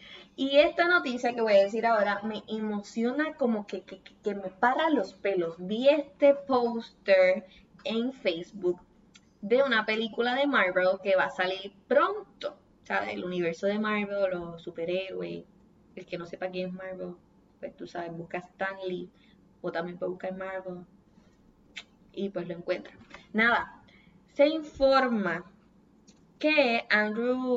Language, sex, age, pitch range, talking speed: Spanish, female, 20-39, 185-245 Hz, 145 wpm